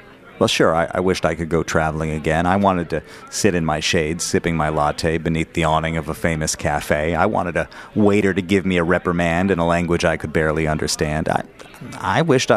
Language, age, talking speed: English, 40-59, 220 wpm